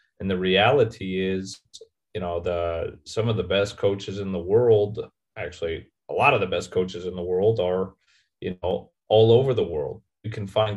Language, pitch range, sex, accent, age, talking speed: English, 95-110 Hz, male, American, 30-49, 195 wpm